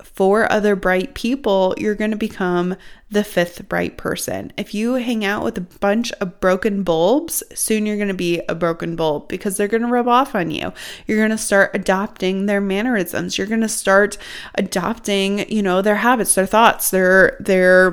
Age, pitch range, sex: 20-39, 190-235 Hz, female